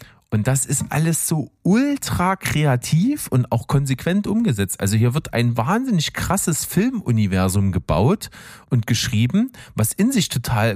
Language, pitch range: German, 105-150 Hz